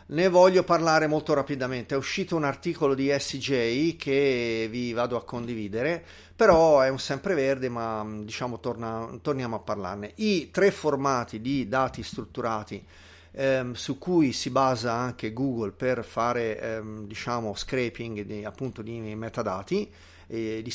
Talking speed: 145 wpm